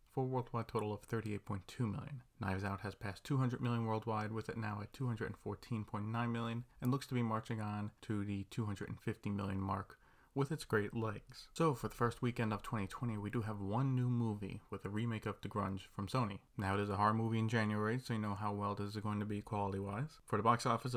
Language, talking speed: English, 225 wpm